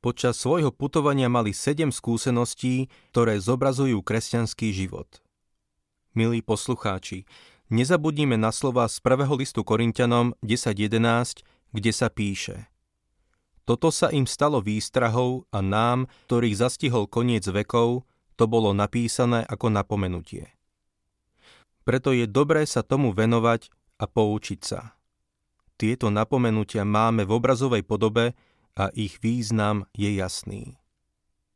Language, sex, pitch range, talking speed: Slovak, male, 105-130 Hz, 110 wpm